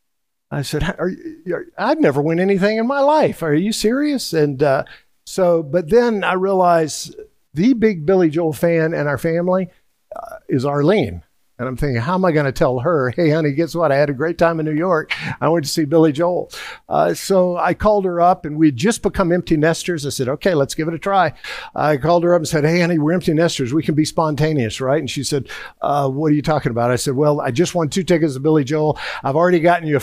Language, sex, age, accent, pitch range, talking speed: English, male, 50-69, American, 145-175 Hz, 240 wpm